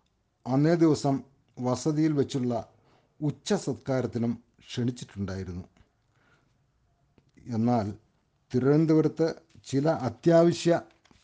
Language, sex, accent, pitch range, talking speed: Malayalam, male, native, 115-145 Hz, 60 wpm